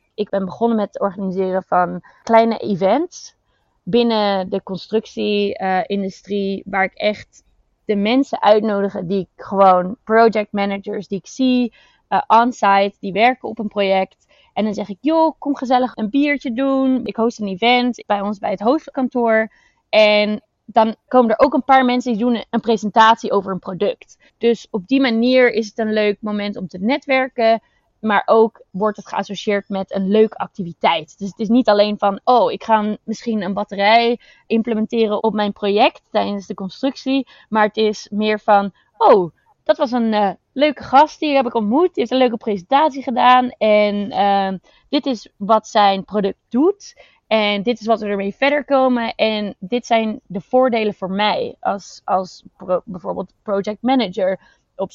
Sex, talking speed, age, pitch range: female, 175 wpm, 20-39, 200-245 Hz